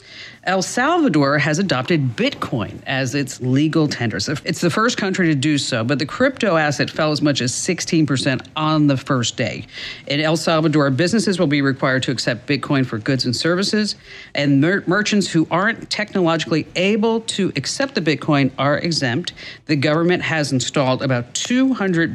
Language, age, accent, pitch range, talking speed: English, 50-69, American, 135-180 Hz, 165 wpm